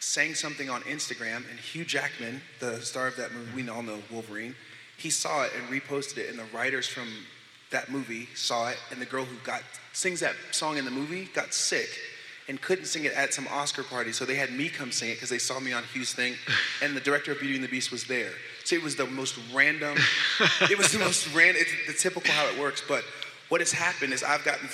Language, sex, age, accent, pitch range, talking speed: English, male, 30-49, American, 125-150 Hz, 240 wpm